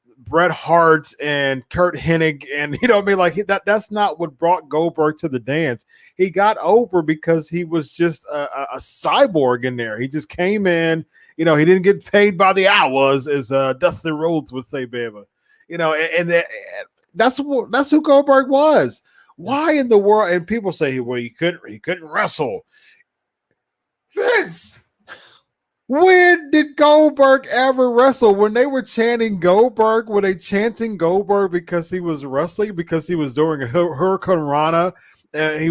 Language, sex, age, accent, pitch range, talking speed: English, male, 30-49, American, 155-220 Hz, 175 wpm